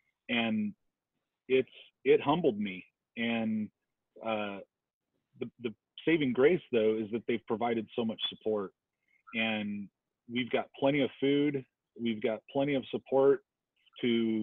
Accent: American